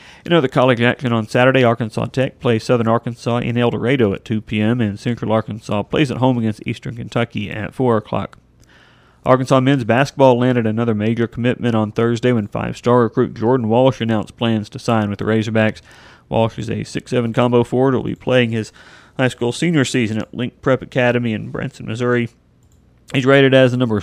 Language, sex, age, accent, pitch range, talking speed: English, male, 40-59, American, 110-125 Hz, 190 wpm